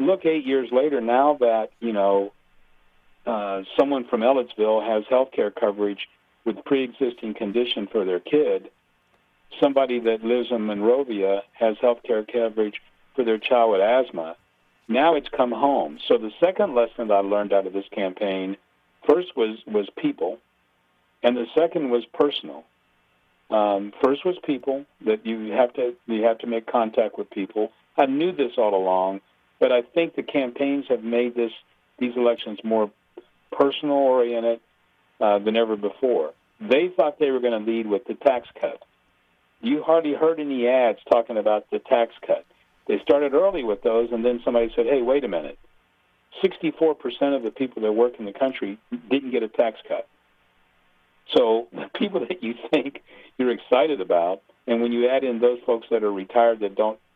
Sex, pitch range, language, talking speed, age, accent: male, 105-135 Hz, English, 175 wpm, 50-69, American